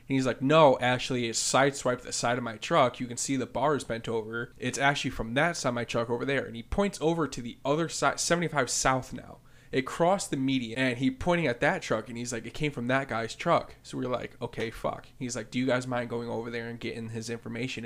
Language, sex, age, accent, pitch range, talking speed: English, male, 20-39, American, 120-145 Hz, 260 wpm